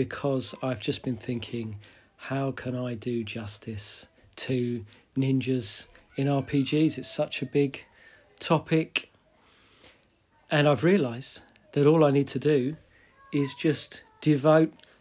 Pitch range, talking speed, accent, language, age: 125-150 Hz, 125 wpm, British, English, 40-59